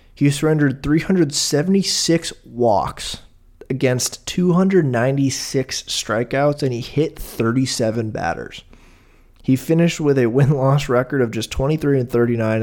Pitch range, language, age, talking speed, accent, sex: 115-150 Hz, English, 20-39, 110 wpm, American, male